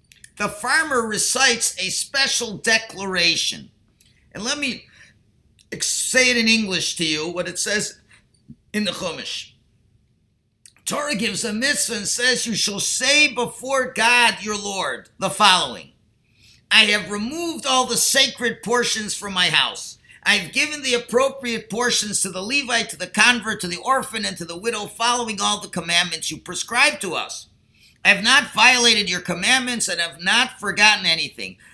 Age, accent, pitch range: 50-69, American, 185-245 Hz